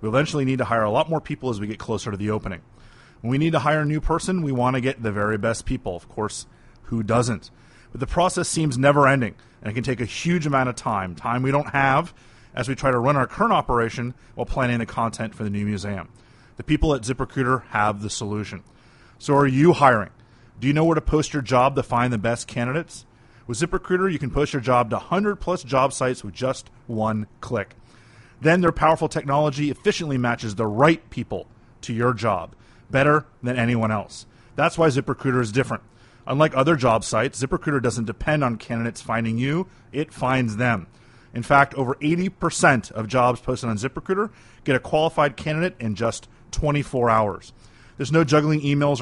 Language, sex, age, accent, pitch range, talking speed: English, male, 30-49, American, 115-145 Hz, 205 wpm